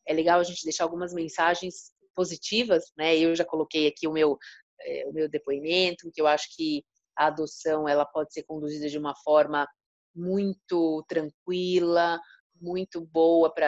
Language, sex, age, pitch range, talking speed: Portuguese, female, 30-49, 155-175 Hz, 160 wpm